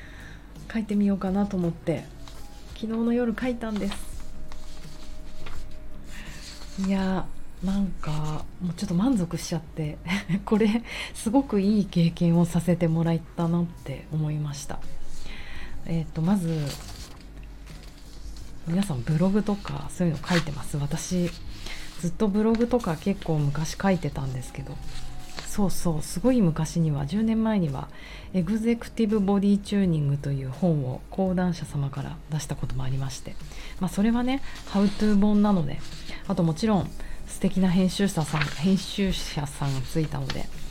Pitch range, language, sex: 150-195 Hz, Japanese, female